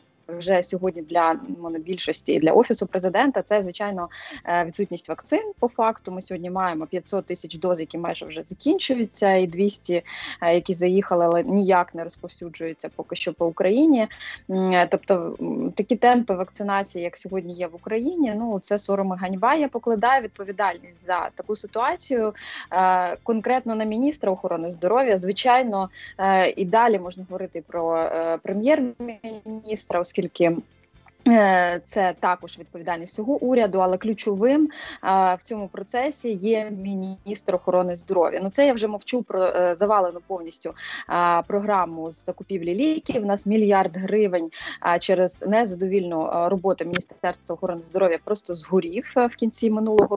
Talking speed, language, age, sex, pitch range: 130 wpm, Ukrainian, 20-39, female, 175-215 Hz